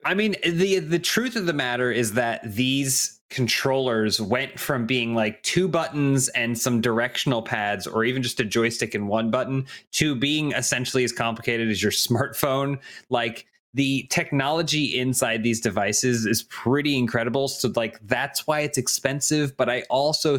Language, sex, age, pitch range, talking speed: English, male, 20-39, 115-140 Hz, 165 wpm